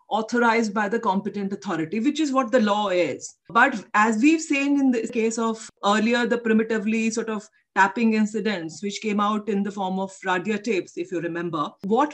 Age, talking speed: 40-59, 195 wpm